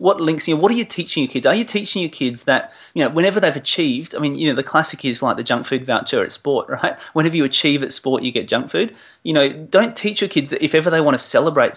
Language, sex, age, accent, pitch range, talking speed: English, male, 30-49, Australian, 125-165 Hz, 295 wpm